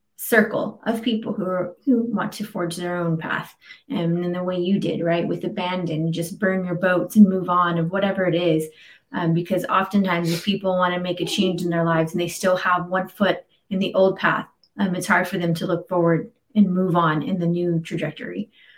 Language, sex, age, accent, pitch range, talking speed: English, female, 20-39, American, 175-215 Hz, 225 wpm